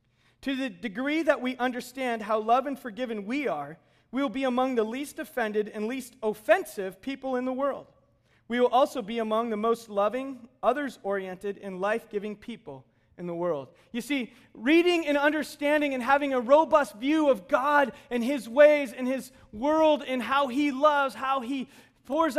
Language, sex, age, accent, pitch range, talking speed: English, male, 30-49, American, 205-280 Hz, 180 wpm